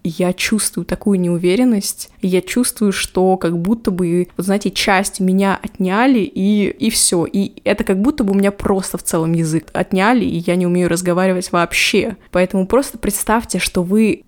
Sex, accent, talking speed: female, native, 170 wpm